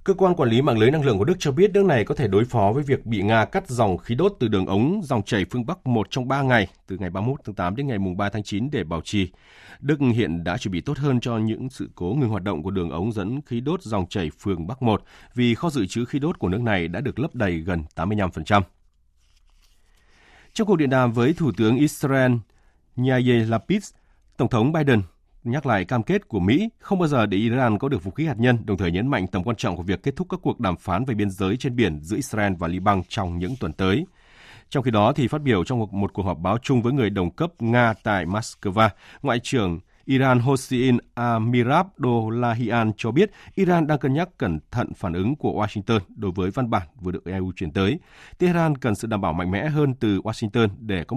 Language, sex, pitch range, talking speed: Vietnamese, male, 95-135 Hz, 240 wpm